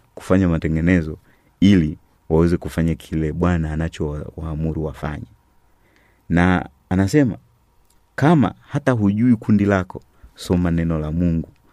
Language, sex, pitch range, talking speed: Swahili, male, 80-95 Hz, 105 wpm